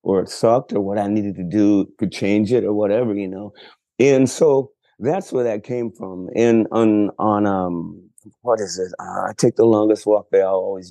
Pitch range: 95-110 Hz